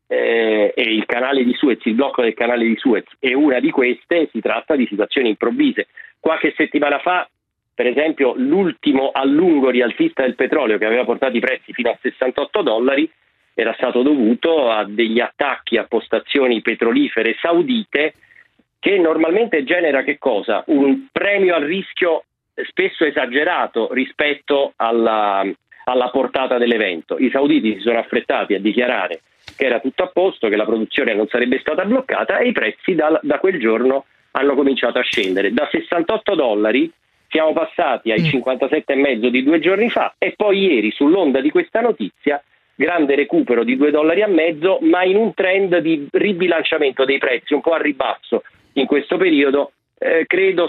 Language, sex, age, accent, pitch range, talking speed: Italian, male, 40-59, native, 130-195 Hz, 160 wpm